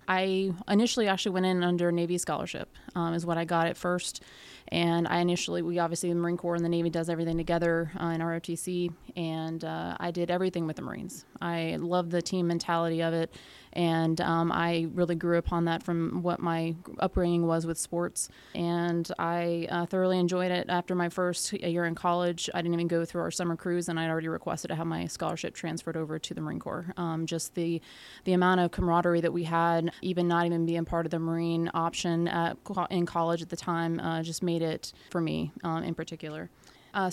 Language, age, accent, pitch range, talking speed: English, 20-39, American, 165-180 Hz, 210 wpm